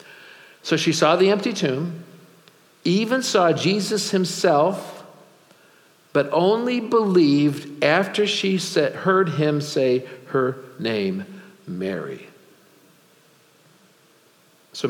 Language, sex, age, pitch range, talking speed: English, male, 60-79, 140-200 Hz, 90 wpm